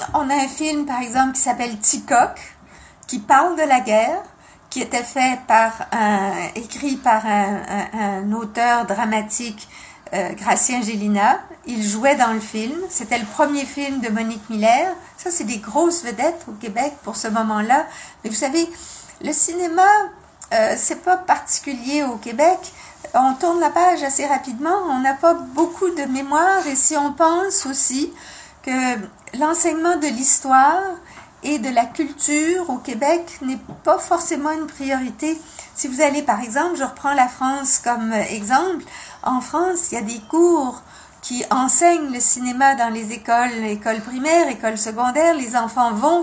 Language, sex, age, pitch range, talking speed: French, female, 60-79, 235-320 Hz, 165 wpm